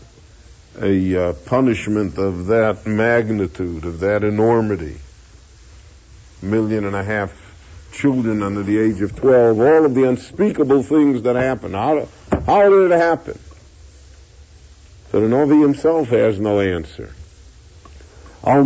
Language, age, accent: English, 60-79, American